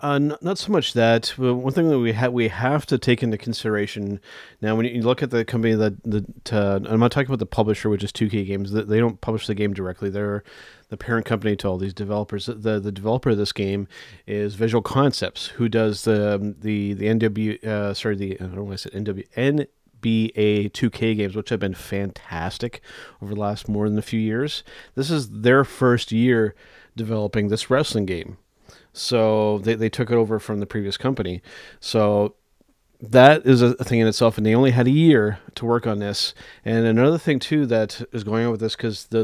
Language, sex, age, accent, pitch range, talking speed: English, male, 30-49, American, 105-120 Hz, 210 wpm